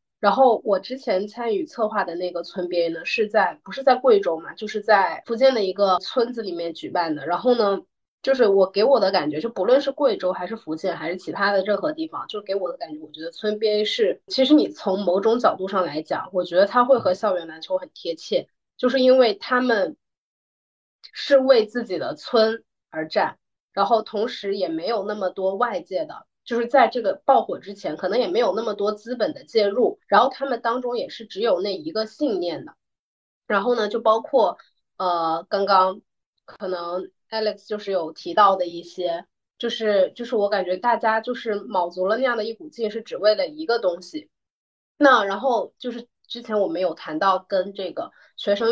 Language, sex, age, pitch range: Chinese, female, 30-49, 185-245 Hz